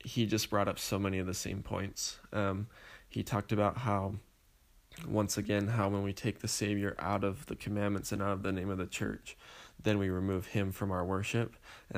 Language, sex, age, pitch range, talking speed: English, male, 20-39, 95-115 Hz, 215 wpm